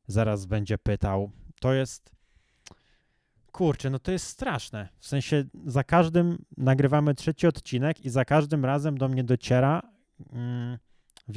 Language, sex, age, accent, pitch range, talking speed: Polish, male, 20-39, native, 125-155 Hz, 130 wpm